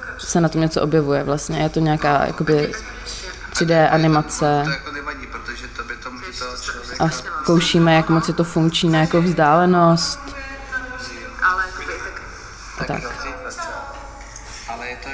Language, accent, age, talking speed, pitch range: Czech, native, 20-39, 100 wpm, 145-170 Hz